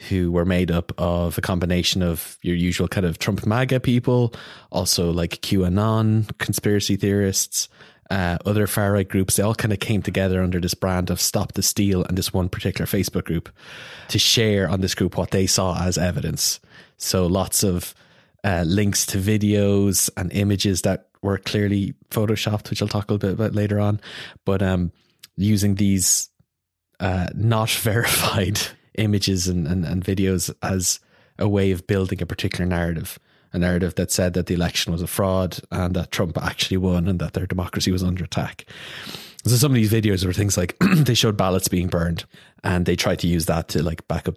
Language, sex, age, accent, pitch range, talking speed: English, male, 20-39, Irish, 90-100 Hz, 190 wpm